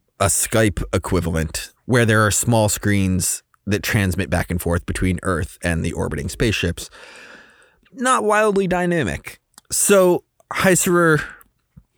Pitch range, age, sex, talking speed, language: 95-125 Hz, 20-39, male, 120 wpm, English